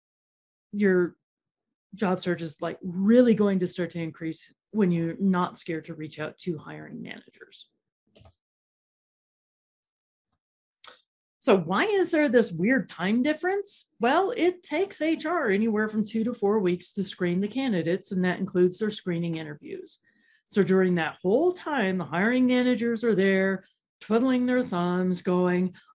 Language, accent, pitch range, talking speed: English, American, 175-235 Hz, 145 wpm